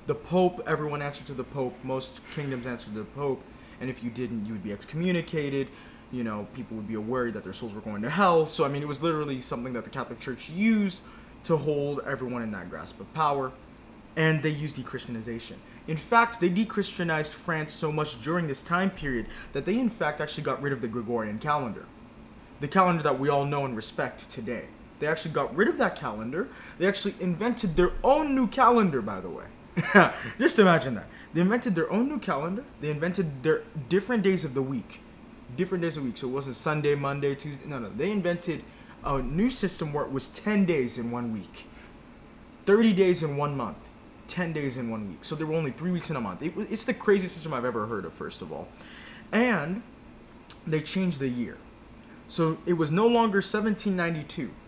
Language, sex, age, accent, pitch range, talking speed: English, male, 20-39, American, 130-185 Hz, 210 wpm